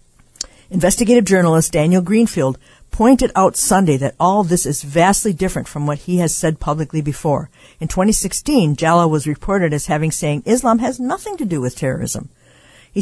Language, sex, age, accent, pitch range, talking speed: English, female, 60-79, American, 140-180 Hz, 170 wpm